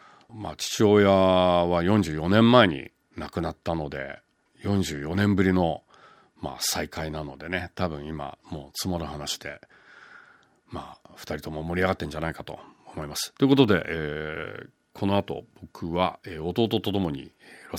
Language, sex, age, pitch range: Japanese, male, 40-59, 75-100 Hz